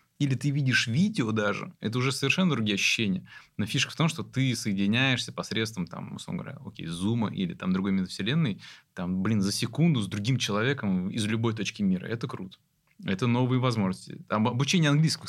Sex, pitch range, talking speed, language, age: male, 105-135 Hz, 180 wpm, Russian, 20-39